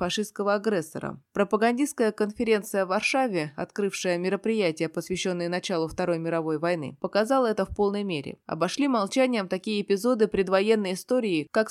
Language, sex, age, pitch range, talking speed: Russian, female, 20-39, 175-220 Hz, 130 wpm